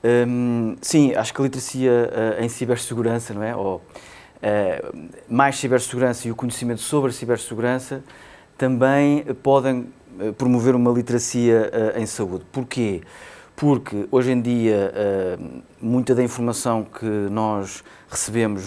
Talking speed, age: 115 wpm, 20-39